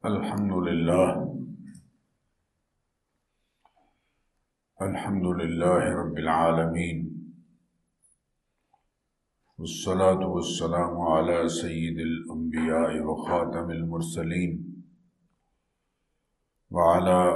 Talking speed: 50 wpm